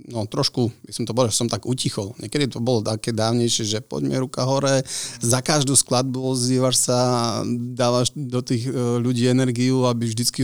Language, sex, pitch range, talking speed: Slovak, male, 110-130 Hz, 170 wpm